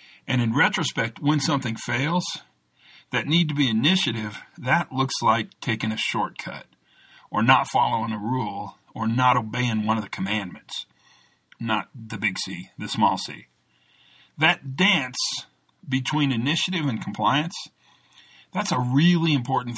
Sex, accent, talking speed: male, American, 140 wpm